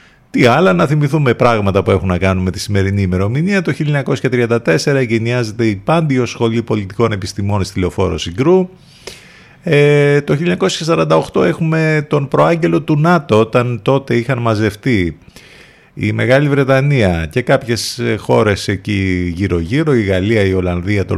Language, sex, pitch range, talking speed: Greek, male, 95-125 Hz, 140 wpm